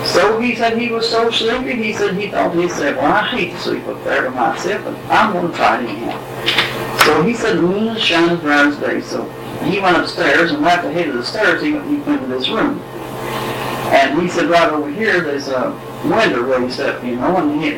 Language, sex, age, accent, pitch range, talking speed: English, female, 60-79, American, 165-225 Hz, 240 wpm